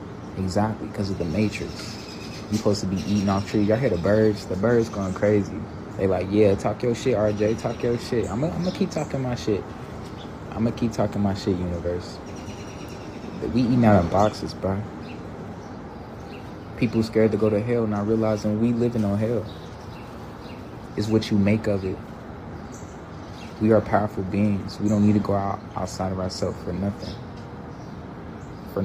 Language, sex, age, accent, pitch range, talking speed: English, male, 20-39, American, 95-110 Hz, 175 wpm